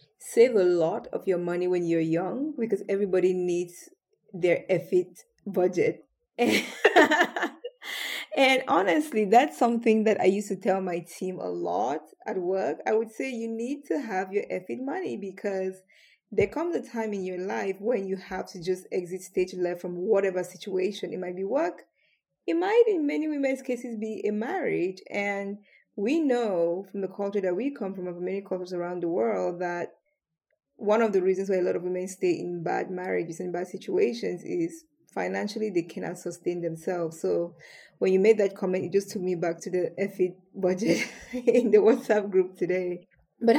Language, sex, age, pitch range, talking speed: English, female, 20-39, 180-230 Hz, 180 wpm